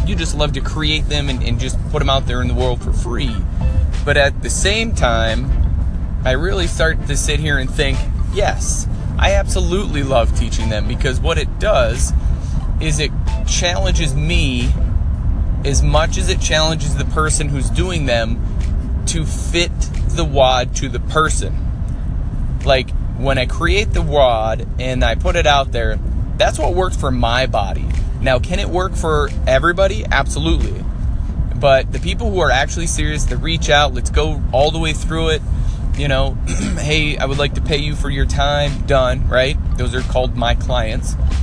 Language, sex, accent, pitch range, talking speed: English, male, American, 70-90 Hz, 180 wpm